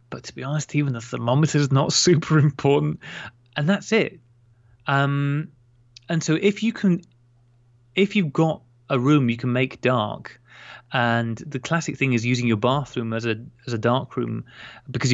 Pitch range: 115-140 Hz